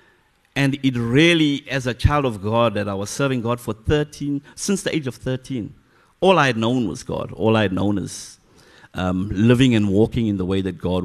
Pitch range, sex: 115-175 Hz, male